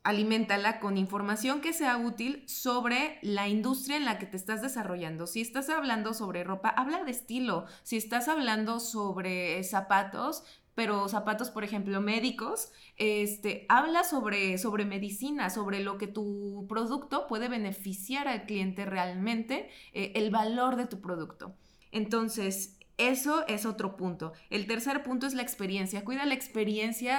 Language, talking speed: Spanish, 150 wpm